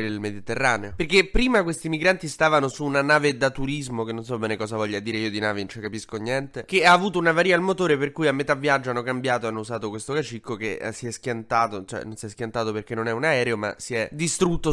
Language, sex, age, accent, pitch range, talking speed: Italian, male, 20-39, native, 115-150 Hz, 255 wpm